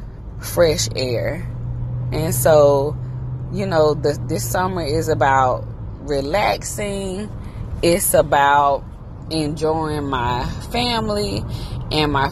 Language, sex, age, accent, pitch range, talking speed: English, female, 20-39, American, 120-150 Hz, 95 wpm